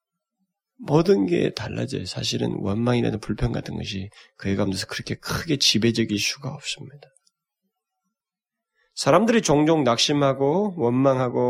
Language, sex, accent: Korean, male, native